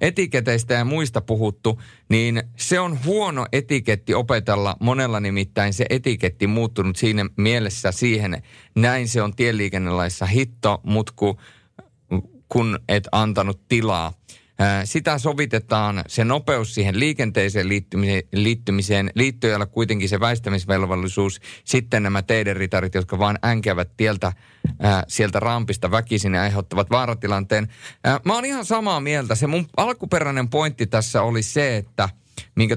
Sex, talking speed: male, 125 wpm